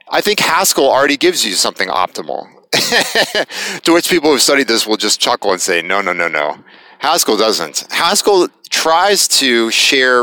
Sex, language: male, English